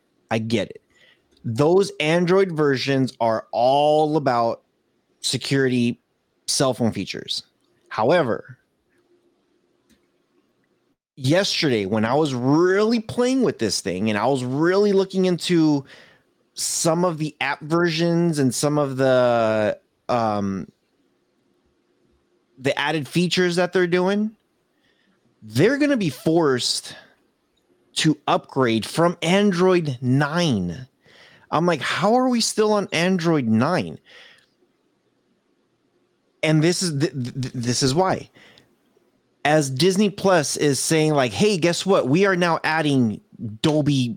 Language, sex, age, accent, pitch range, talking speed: English, male, 30-49, American, 125-175 Hz, 115 wpm